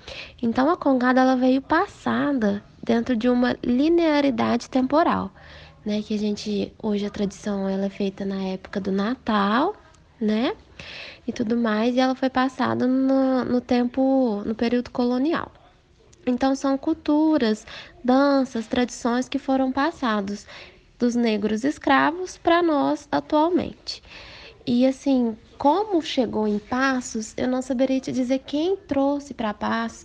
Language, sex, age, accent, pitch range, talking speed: Portuguese, female, 10-29, Brazilian, 215-270 Hz, 135 wpm